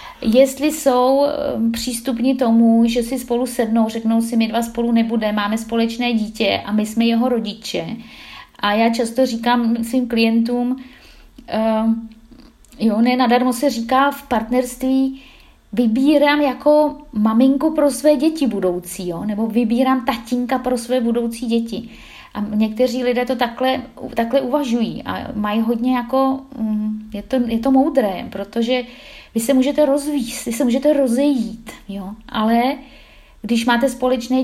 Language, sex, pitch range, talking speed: Czech, female, 225-260 Hz, 140 wpm